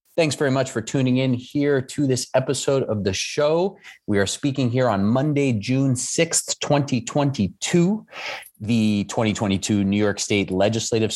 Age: 30-49